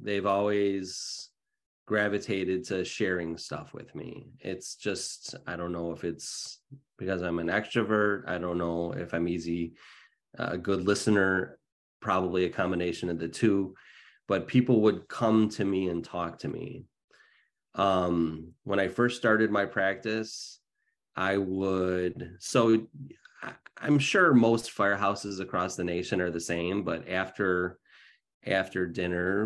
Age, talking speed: 30-49, 140 wpm